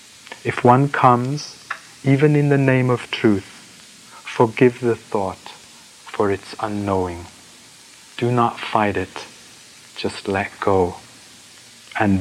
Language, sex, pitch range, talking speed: English, male, 100-130 Hz, 115 wpm